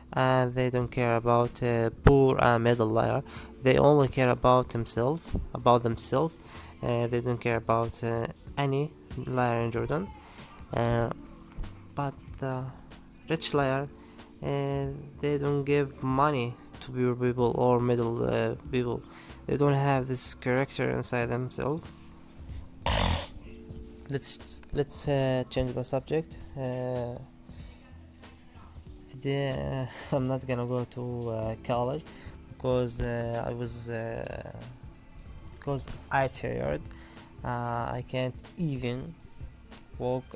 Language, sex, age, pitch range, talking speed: English, male, 20-39, 110-130 Hz, 120 wpm